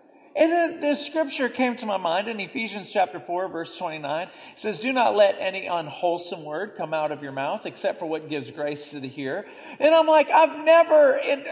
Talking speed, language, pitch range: 215 wpm, English, 195-315 Hz